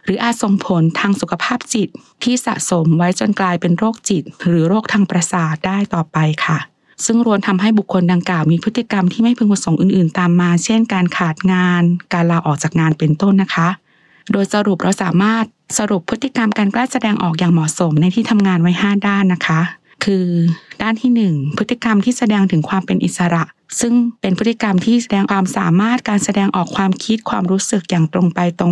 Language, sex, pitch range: English, female, 175-210 Hz